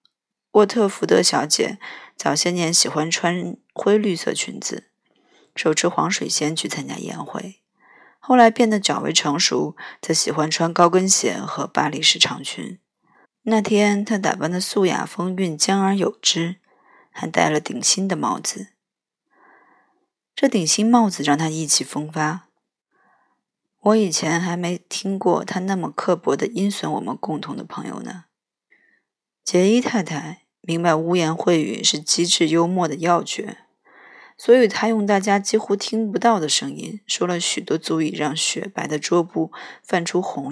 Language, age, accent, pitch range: Chinese, 20-39, native, 160-205 Hz